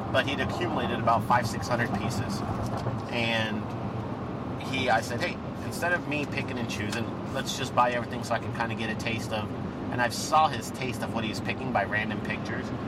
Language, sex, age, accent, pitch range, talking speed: English, male, 40-59, American, 110-120 Hz, 205 wpm